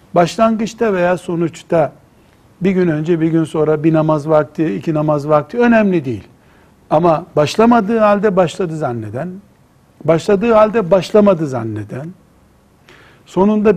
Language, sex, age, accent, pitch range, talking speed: Turkish, male, 60-79, native, 150-205 Hz, 120 wpm